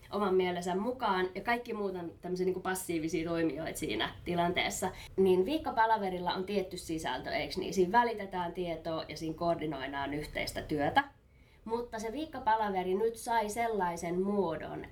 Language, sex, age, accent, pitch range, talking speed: Finnish, female, 20-39, native, 170-215 Hz, 135 wpm